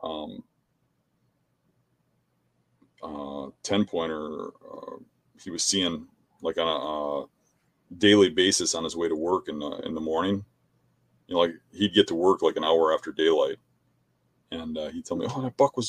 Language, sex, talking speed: English, male, 170 wpm